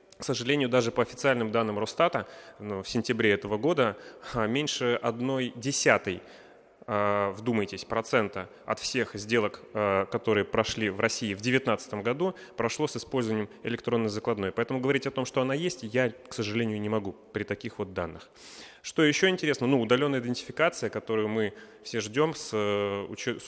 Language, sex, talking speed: Russian, male, 155 wpm